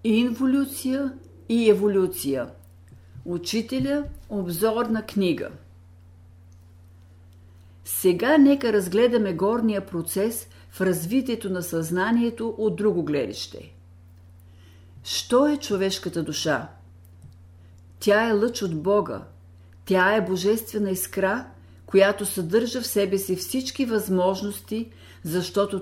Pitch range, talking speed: 140-220 Hz, 95 wpm